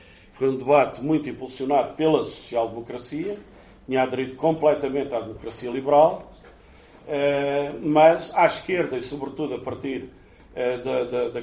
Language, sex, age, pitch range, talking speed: Portuguese, male, 50-69, 120-145 Hz, 110 wpm